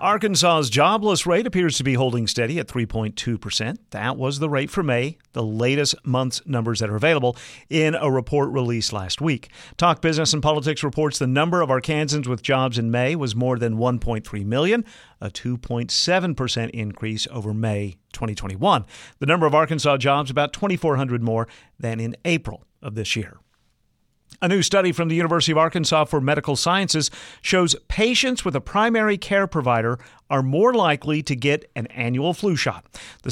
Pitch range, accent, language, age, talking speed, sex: 120-160 Hz, American, English, 50-69, 175 wpm, male